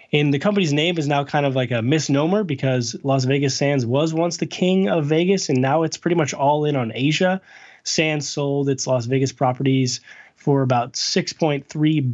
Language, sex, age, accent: English, male, 20-39, American